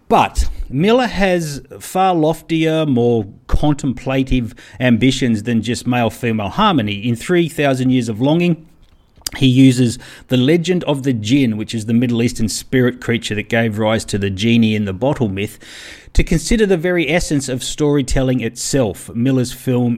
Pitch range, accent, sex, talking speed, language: 115-145 Hz, Australian, male, 155 wpm, English